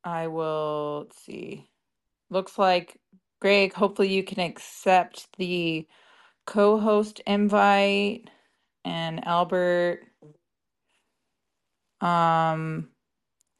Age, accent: 20-39, American